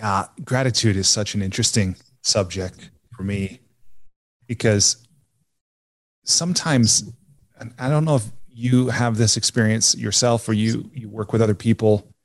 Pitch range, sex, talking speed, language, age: 105-135 Hz, male, 140 wpm, English, 30-49